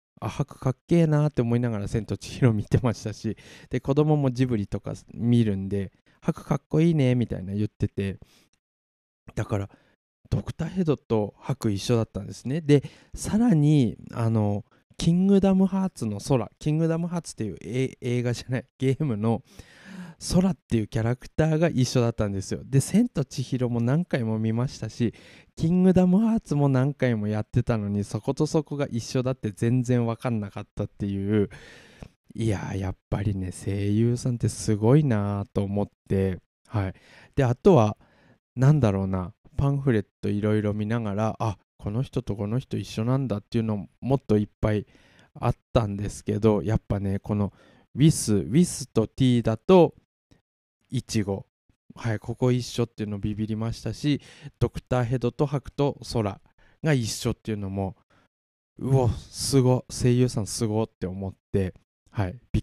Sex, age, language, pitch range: male, 20-39, Japanese, 105-130 Hz